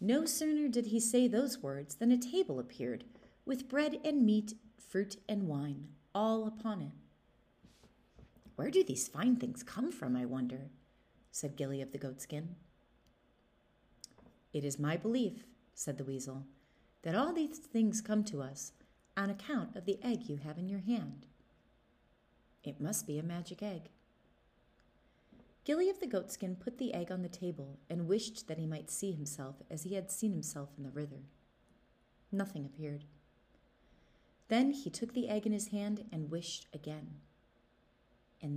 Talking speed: 160 wpm